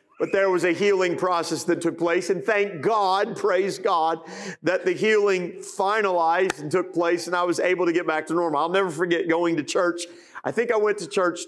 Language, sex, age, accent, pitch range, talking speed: English, male, 40-59, American, 160-195 Hz, 220 wpm